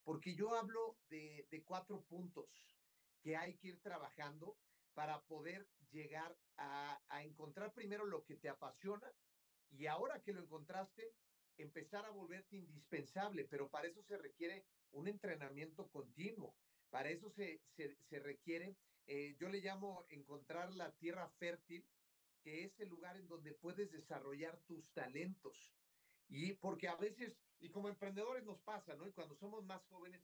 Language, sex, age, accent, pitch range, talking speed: Spanish, male, 40-59, Mexican, 155-195 Hz, 155 wpm